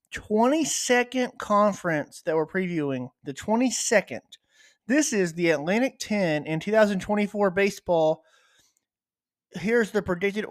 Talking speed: 105 wpm